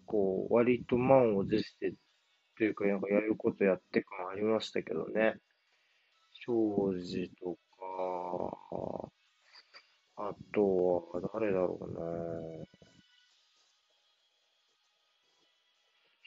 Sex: male